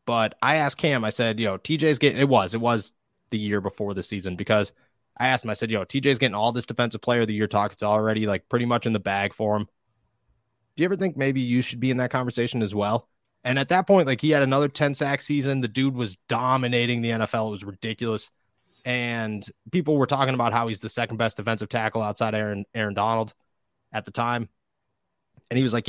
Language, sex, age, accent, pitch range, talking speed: English, male, 20-39, American, 110-145 Hz, 240 wpm